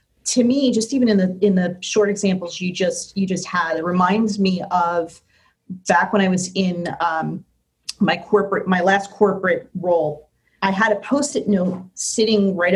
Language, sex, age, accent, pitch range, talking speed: English, female, 30-49, American, 175-200 Hz, 180 wpm